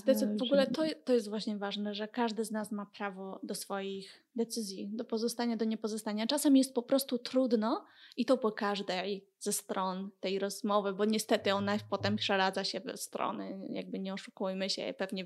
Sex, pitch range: female, 205-250 Hz